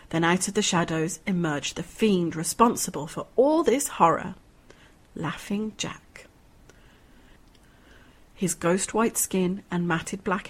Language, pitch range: English, 170-215 Hz